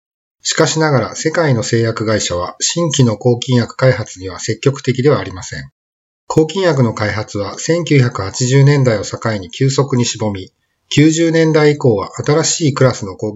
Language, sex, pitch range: Japanese, male, 110-145 Hz